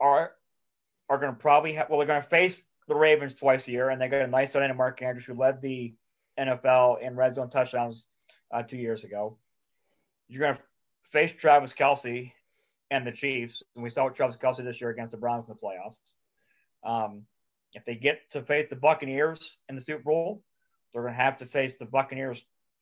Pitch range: 125-160 Hz